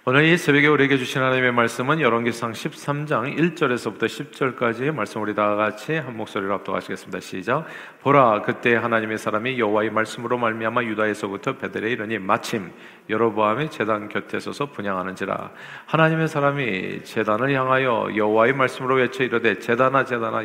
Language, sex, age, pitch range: Korean, male, 40-59, 110-135 Hz